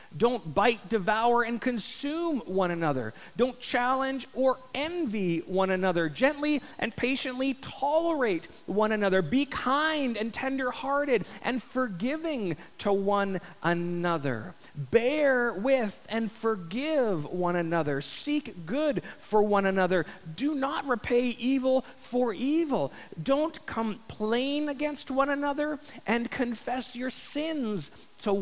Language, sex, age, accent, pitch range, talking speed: English, male, 40-59, American, 210-270 Hz, 115 wpm